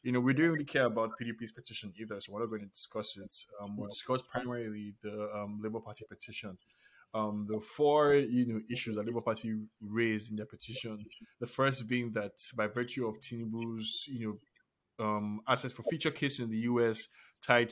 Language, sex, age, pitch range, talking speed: English, male, 20-39, 110-125 Hz, 200 wpm